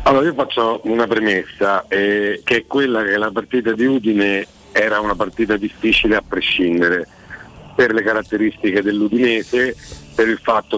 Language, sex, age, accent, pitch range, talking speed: Italian, male, 50-69, native, 100-120 Hz, 150 wpm